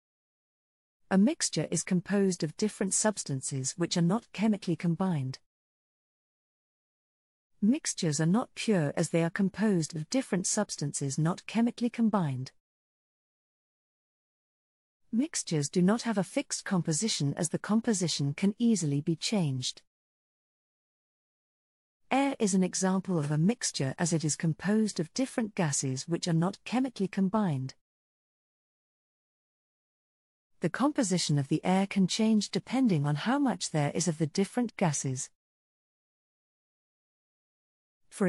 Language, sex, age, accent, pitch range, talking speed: English, female, 40-59, British, 155-210 Hz, 120 wpm